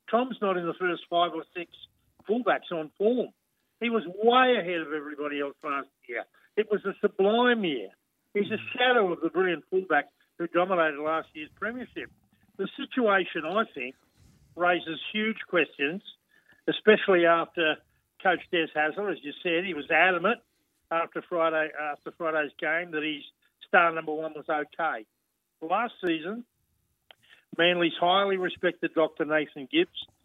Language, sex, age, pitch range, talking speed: English, male, 50-69, 155-185 Hz, 150 wpm